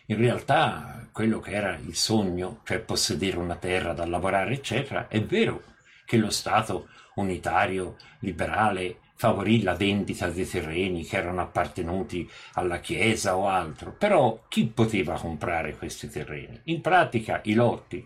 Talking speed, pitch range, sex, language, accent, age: 145 wpm, 90-120 Hz, male, Italian, native, 50-69